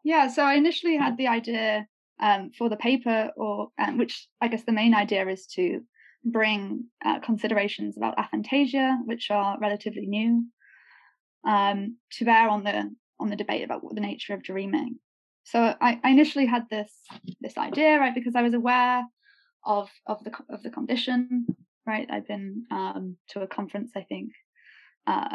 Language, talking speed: English, 175 wpm